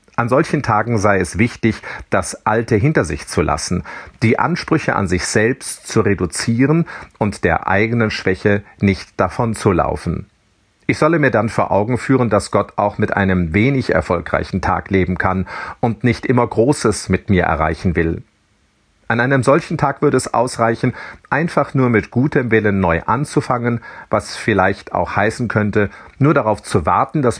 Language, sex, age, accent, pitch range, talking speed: German, male, 40-59, German, 90-120 Hz, 165 wpm